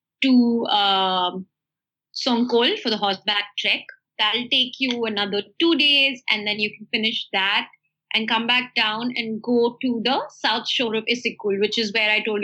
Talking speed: 175 wpm